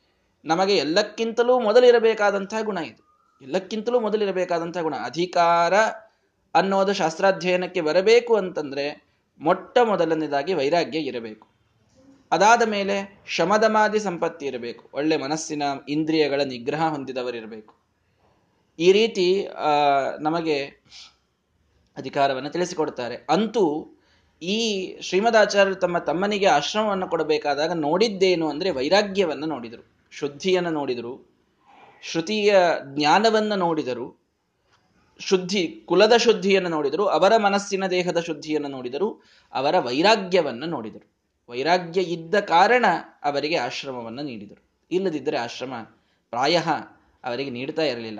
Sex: male